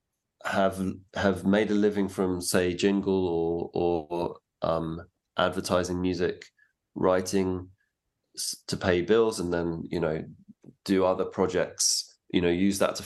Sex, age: male, 20-39